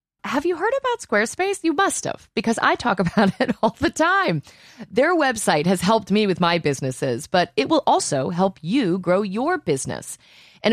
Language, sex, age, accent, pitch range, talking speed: English, female, 30-49, American, 150-225 Hz, 190 wpm